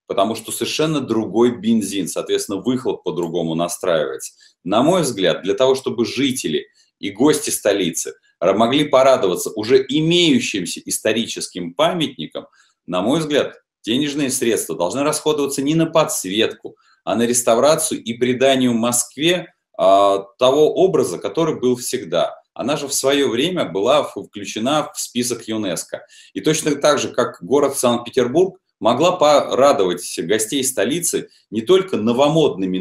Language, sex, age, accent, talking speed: Russian, male, 30-49, native, 130 wpm